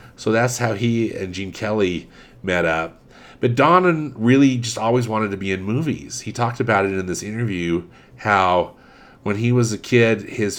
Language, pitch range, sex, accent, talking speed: English, 90-115 Hz, male, American, 185 wpm